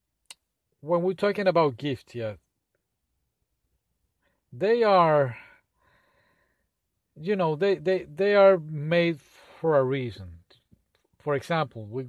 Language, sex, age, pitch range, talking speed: English, male, 40-59, 115-150 Hz, 105 wpm